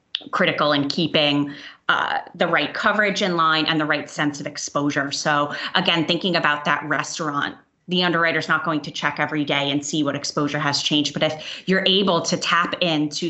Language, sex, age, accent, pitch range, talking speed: English, female, 30-49, American, 155-180 Hz, 195 wpm